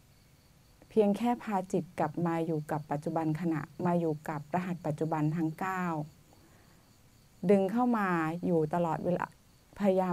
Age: 20-39